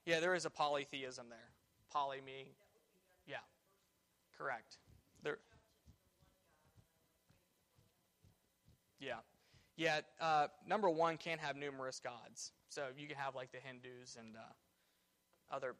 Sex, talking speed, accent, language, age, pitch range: male, 115 wpm, American, English, 20-39, 135-165 Hz